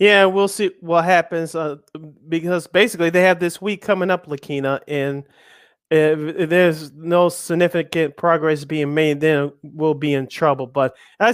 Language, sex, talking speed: English, male, 165 wpm